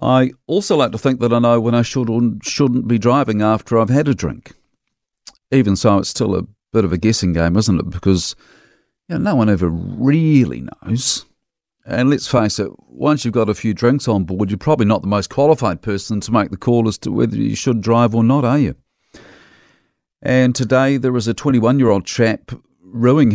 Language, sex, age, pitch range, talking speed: English, male, 50-69, 95-120 Hz, 205 wpm